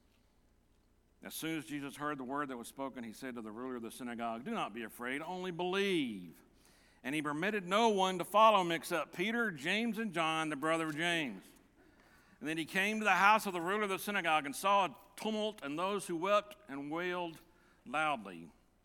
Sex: male